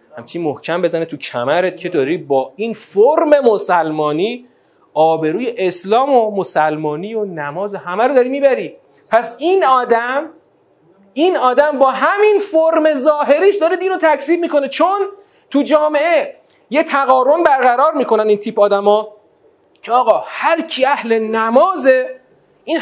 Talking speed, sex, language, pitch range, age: 135 wpm, male, Persian, 190-295 Hz, 40-59